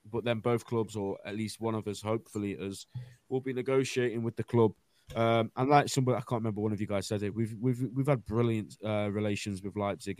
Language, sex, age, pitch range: English, male, 20-39, 105-125 Hz